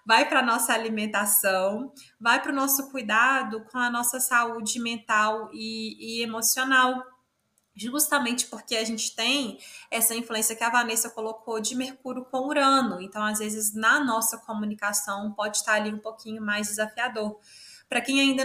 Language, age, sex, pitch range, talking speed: Portuguese, 20-39, female, 225-265 Hz, 160 wpm